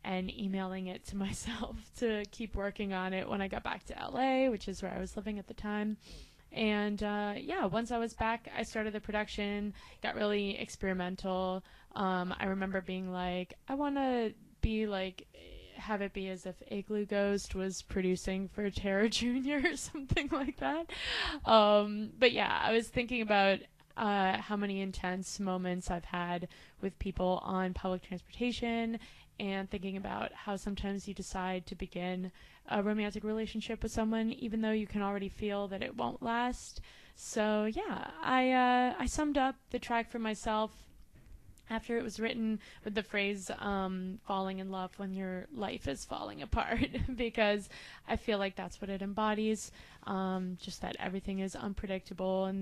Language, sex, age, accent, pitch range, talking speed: English, female, 20-39, American, 190-225 Hz, 170 wpm